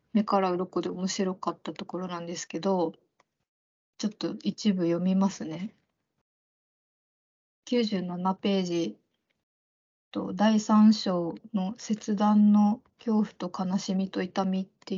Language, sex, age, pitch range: Japanese, female, 20-39, 185-225 Hz